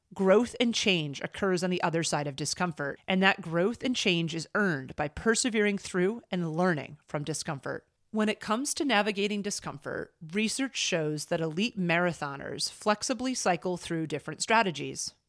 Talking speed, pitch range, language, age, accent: 155 wpm, 160-205 Hz, English, 30-49, American